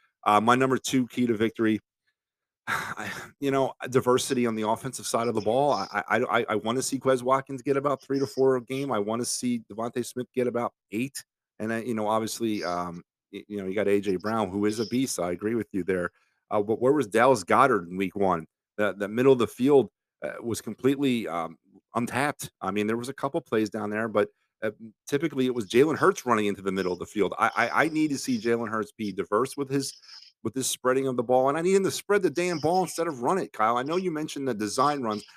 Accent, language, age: American, English, 40-59